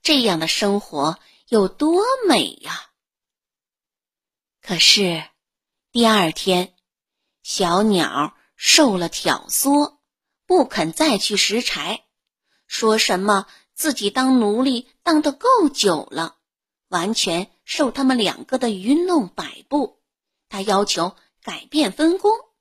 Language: Chinese